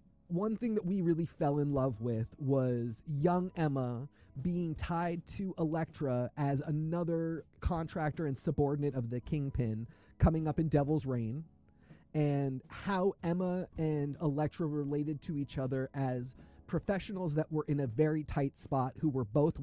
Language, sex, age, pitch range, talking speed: English, male, 30-49, 135-175 Hz, 155 wpm